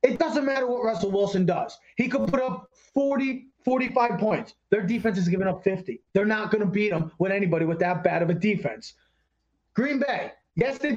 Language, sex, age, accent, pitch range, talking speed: English, male, 20-39, American, 185-250 Hz, 210 wpm